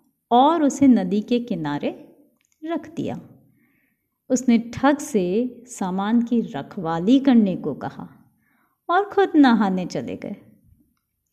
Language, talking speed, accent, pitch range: Hindi, 110 wpm, native, 215-275 Hz